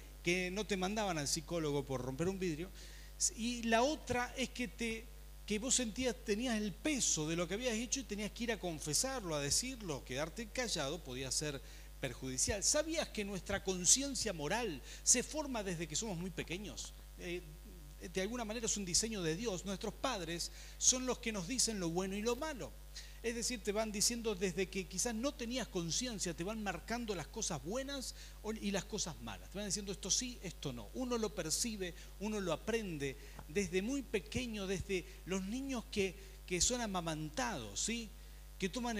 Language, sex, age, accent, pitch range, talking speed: Spanish, male, 40-59, Argentinian, 170-235 Hz, 185 wpm